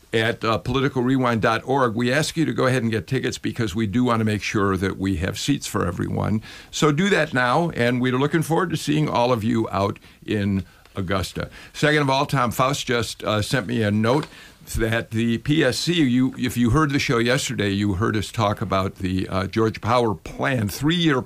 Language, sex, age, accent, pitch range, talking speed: English, male, 50-69, American, 100-125 Hz, 205 wpm